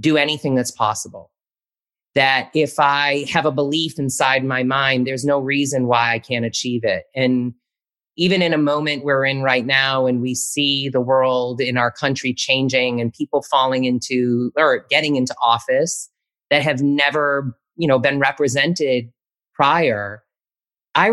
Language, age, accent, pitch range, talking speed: English, 30-49, American, 120-145 Hz, 160 wpm